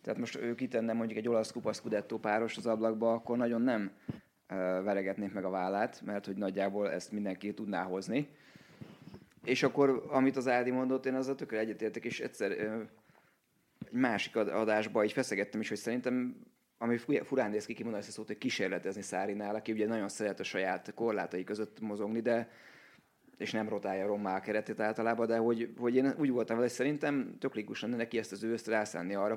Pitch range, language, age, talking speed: 105-120 Hz, Hungarian, 20-39, 180 wpm